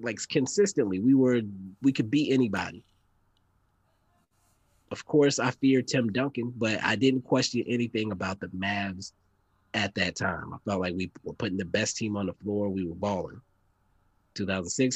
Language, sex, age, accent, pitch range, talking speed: English, male, 30-49, American, 95-115 Hz, 165 wpm